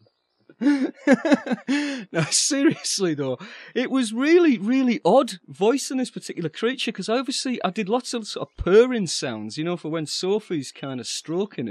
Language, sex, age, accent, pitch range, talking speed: English, male, 40-59, British, 190-270 Hz, 155 wpm